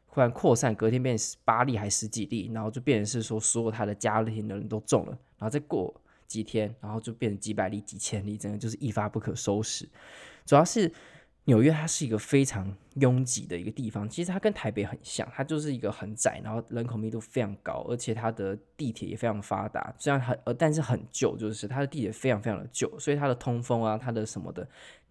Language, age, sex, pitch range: Chinese, 20-39, male, 110-130 Hz